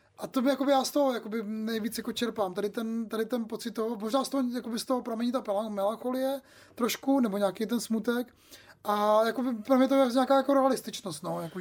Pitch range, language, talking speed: 210-240 Hz, Czech, 205 wpm